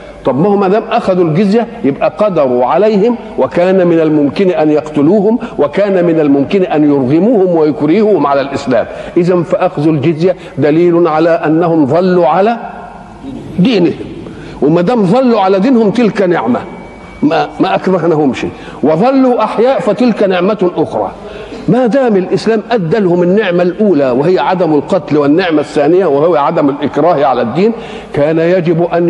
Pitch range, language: 165-220 Hz, Arabic